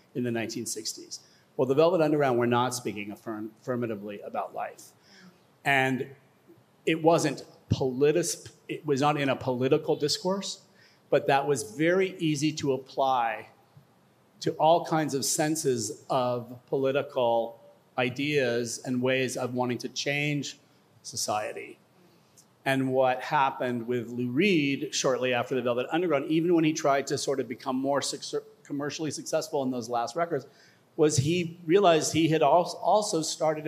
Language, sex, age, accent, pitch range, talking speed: English, male, 40-59, American, 125-150 Hz, 145 wpm